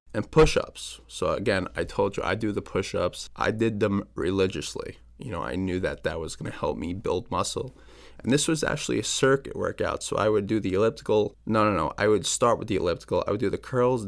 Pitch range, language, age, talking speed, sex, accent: 95-125 Hz, English, 20-39, 230 wpm, male, American